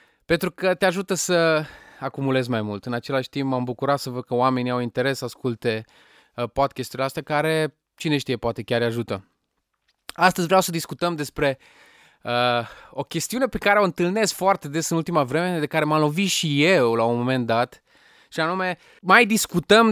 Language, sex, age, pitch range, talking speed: Romanian, male, 20-39, 125-180 Hz, 180 wpm